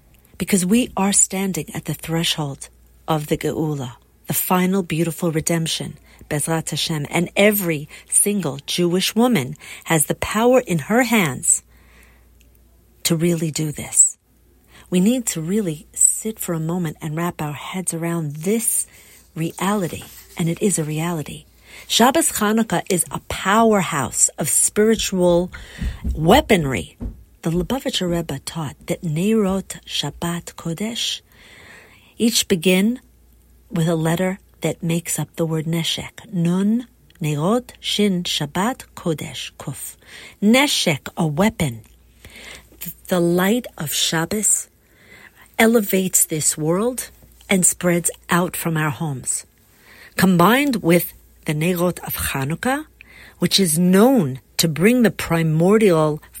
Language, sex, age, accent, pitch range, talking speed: English, female, 40-59, American, 155-200 Hz, 120 wpm